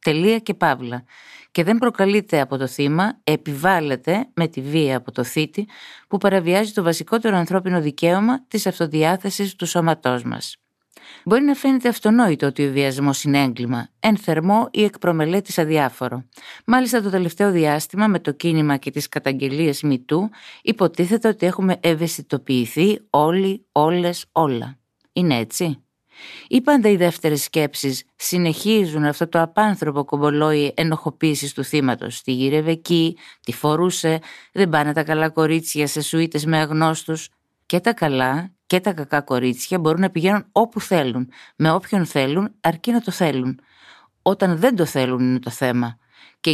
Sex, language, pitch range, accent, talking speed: female, Greek, 140-190 Hz, native, 145 wpm